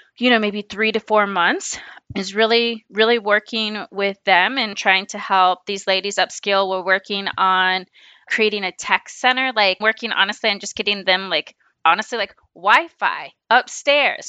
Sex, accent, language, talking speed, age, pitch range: female, American, English, 165 wpm, 20-39, 195-230 Hz